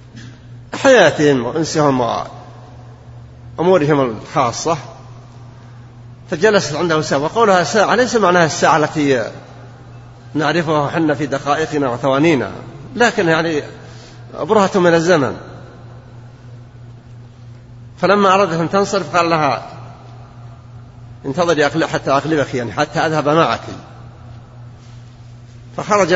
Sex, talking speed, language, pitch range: male, 85 wpm, Arabic, 120-155 Hz